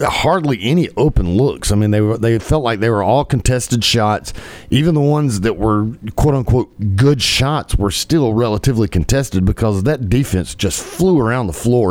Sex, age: male, 40-59